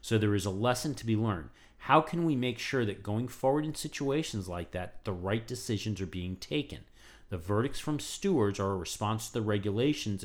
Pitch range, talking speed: 100-130 Hz, 210 wpm